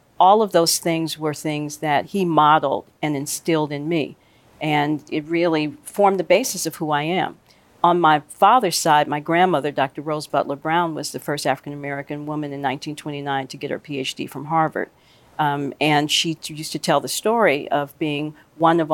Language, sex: English, female